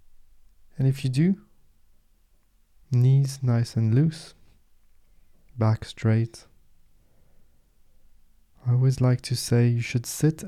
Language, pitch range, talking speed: English, 80-130 Hz, 105 wpm